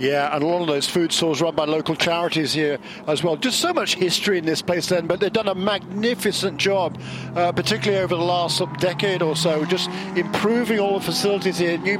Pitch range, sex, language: 165-200 Hz, male, English